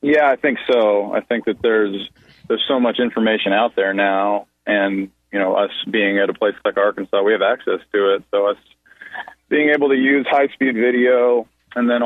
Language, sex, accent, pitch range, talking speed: English, male, American, 95-120 Hz, 205 wpm